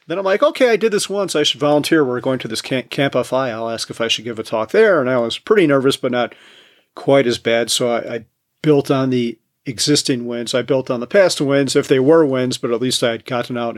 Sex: male